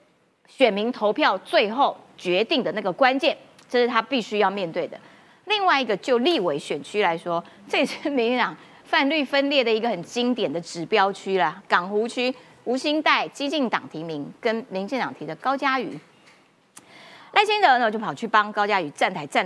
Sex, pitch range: female, 190-270 Hz